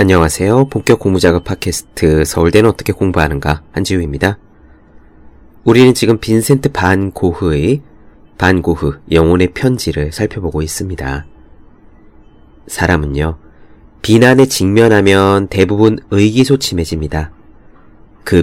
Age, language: 30-49, Korean